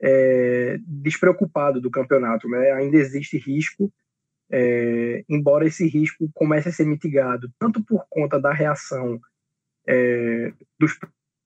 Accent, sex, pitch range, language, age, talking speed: Brazilian, male, 135-160 Hz, Portuguese, 20-39, 120 wpm